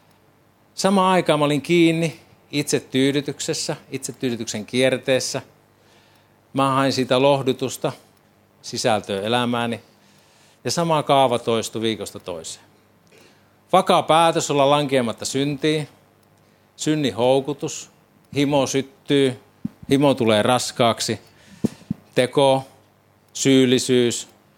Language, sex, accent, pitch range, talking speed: Finnish, male, native, 110-135 Hz, 85 wpm